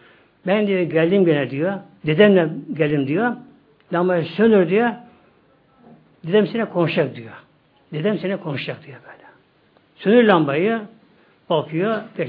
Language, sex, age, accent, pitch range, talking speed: Turkish, male, 60-79, native, 155-215 Hz, 110 wpm